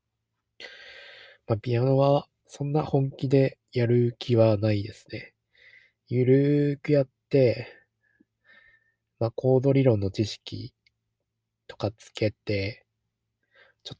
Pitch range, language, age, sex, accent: 105-125 Hz, Japanese, 20-39, male, native